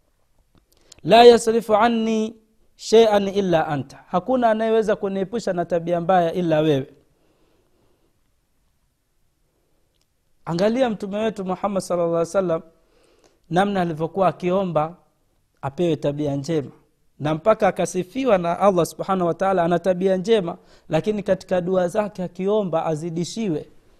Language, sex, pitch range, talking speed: Swahili, male, 165-210 Hz, 110 wpm